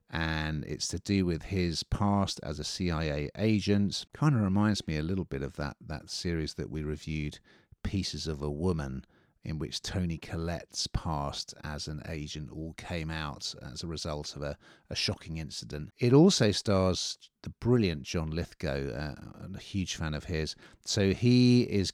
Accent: British